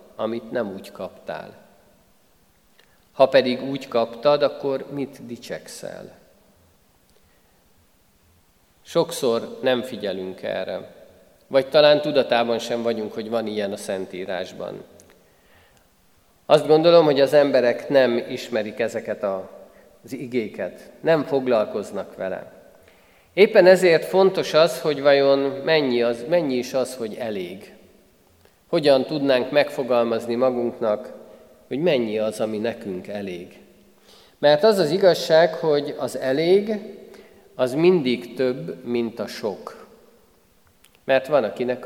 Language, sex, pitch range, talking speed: Hungarian, male, 120-150 Hz, 110 wpm